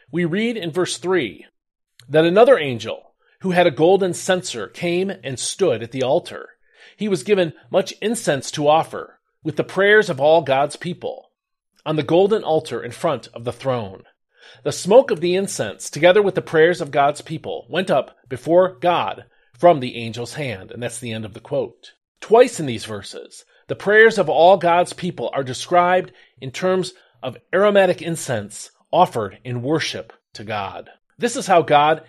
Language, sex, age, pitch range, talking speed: English, male, 40-59, 140-200 Hz, 180 wpm